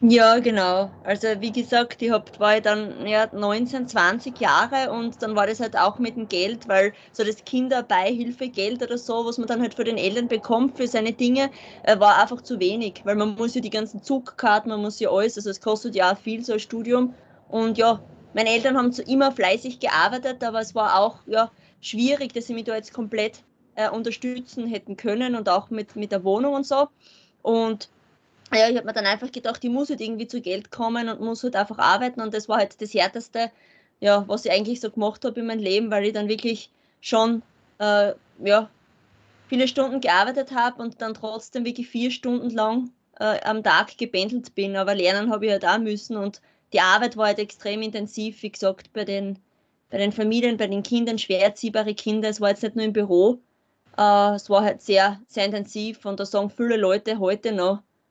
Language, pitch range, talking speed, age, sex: German, 205-240 Hz, 215 wpm, 20-39, female